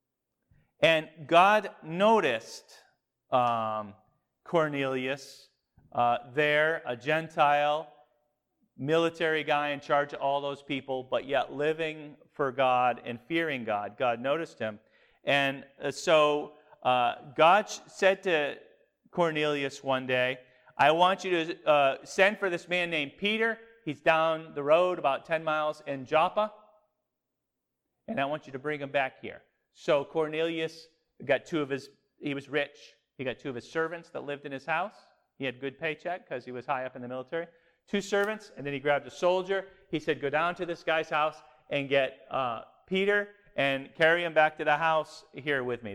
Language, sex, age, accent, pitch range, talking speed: English, male, 40-59, American, 140-170 Hz, 170 wpm